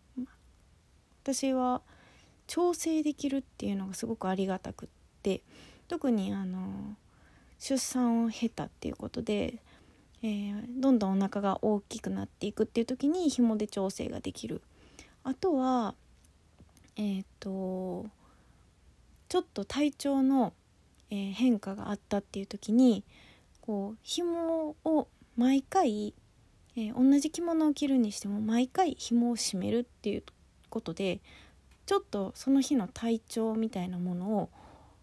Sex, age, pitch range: female, 20-39, 195-285 Hz